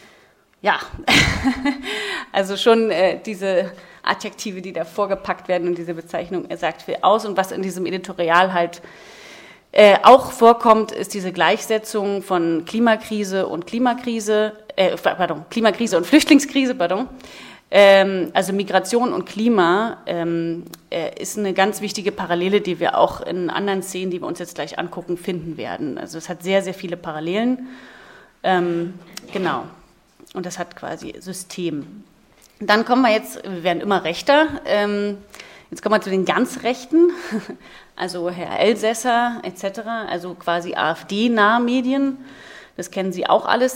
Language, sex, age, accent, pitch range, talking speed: German, female, 30-49, German, 175-220 Hz, 150 wpm